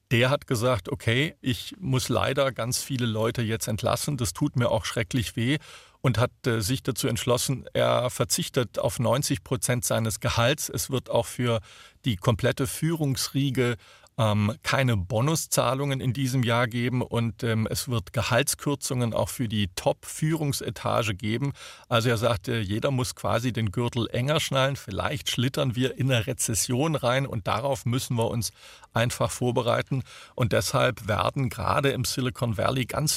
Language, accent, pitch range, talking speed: German, German, 115-135 Hz, 150 wpm